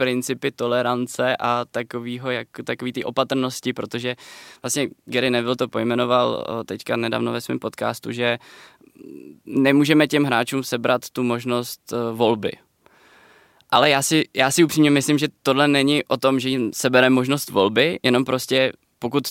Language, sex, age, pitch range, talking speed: Czech, male, 20-39, 125-140 Hz, 145 wpm